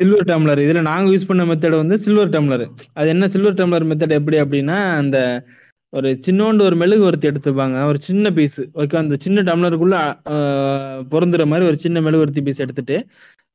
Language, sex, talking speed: Tamil, male, 175 wpm